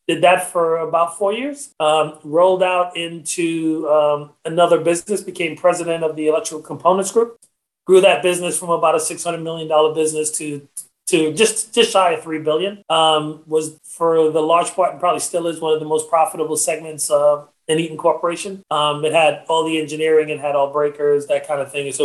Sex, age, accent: male, 30-49, American